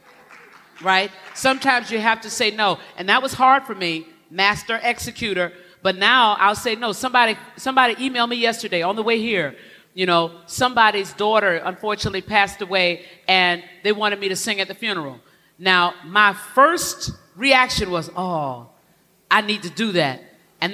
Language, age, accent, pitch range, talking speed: English, 40-59, American, 180-220 Hz, 165 wpm